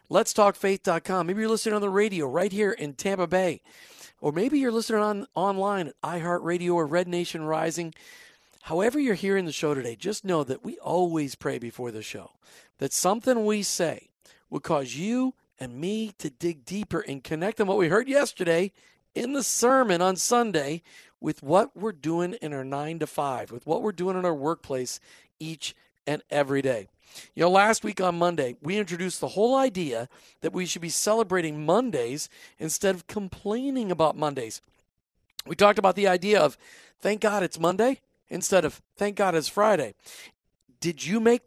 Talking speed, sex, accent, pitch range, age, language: 180 wpm, male, American, 155-210 Hz, 50-69, English